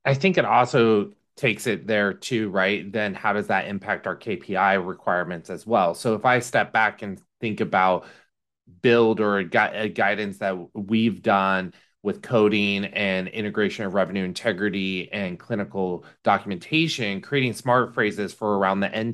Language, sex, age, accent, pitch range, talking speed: English, male, 30-49, American, 100-120 Hz, 155 wpm